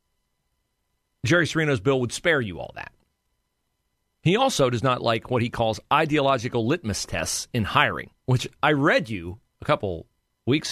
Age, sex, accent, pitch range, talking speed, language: 40-59, male, American, 110-155 Hz, 155 wpm, English